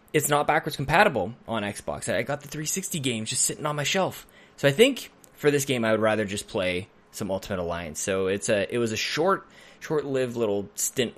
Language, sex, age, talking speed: English, male, 20-39, 215 wpm